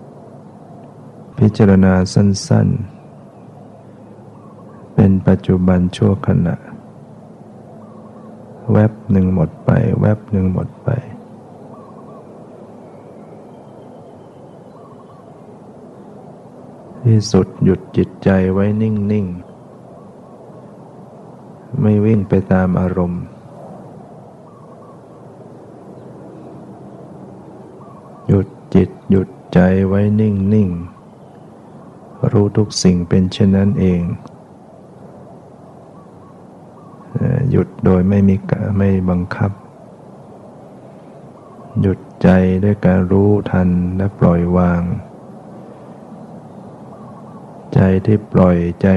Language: Thai